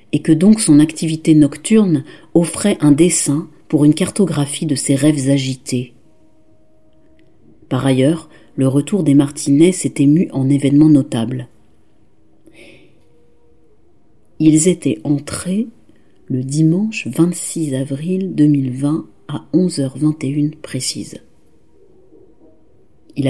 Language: French